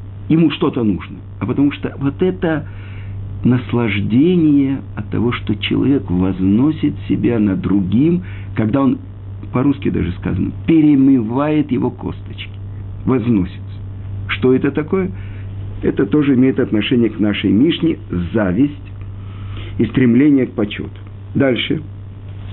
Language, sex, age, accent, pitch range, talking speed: Russian, male, 50-69, native, 100-130 Hz, 110 wpm